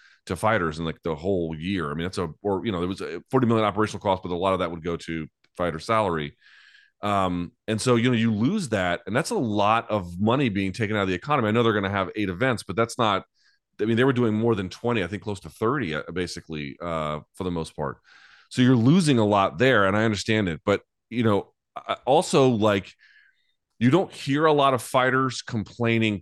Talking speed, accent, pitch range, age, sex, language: 240 wpm, American, 85-115 Hz, 30-49, male, English